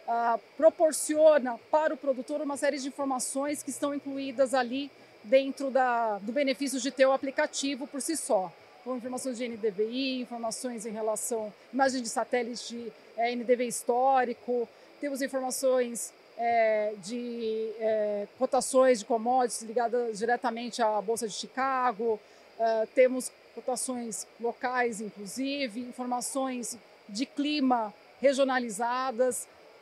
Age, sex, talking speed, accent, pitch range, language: 40-59, female, 125 wpm, Brazilian, 235-270 Hz, Portuguese